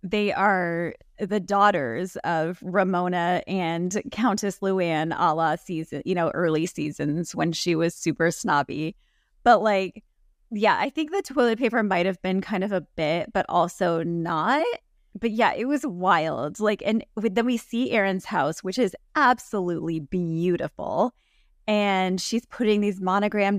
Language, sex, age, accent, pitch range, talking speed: English, female, 20-39, American, 175-210 Hz, 155 wpm